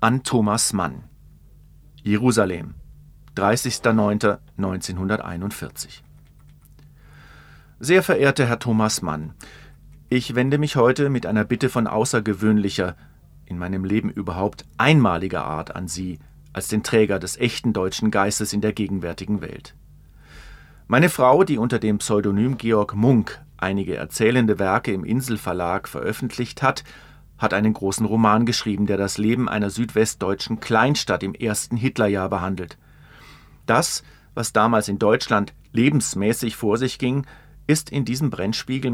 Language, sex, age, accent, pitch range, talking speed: German, male, 40-59, German, 100-125 Hz, 125 wpm